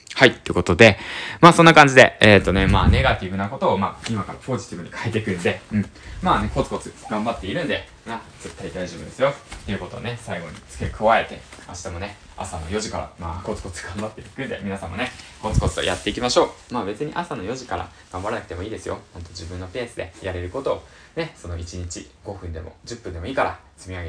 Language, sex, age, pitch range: Japanese, male, 20-39, 90-130 Hz